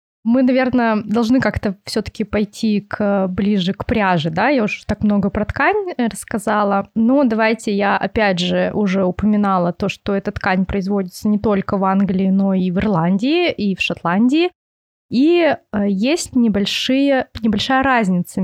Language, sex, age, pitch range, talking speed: Russian, female, 20-39, 190-235 Hz, 155 wpm